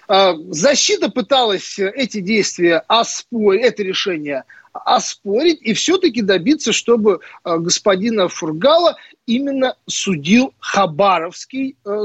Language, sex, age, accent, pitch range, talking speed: Russian, male, 40-59, native, 190-280 Hz, 80 wpm